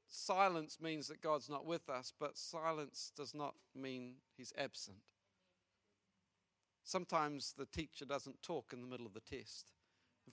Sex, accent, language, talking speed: male, British, English, 150 wpm